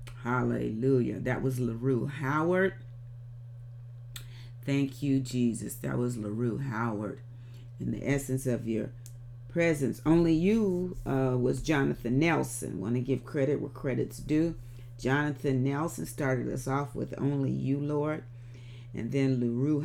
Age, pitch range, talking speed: 40-59, 120-135 Hz, 130 wpm